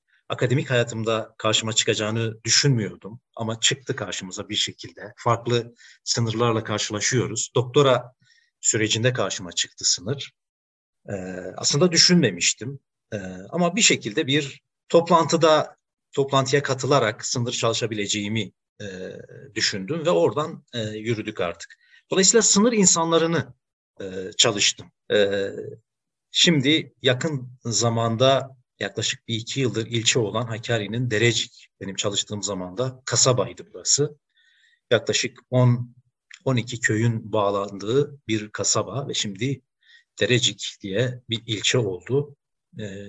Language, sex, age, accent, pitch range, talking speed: Turkish, male, 50-69, native, 110-145 Hz, 105 wpm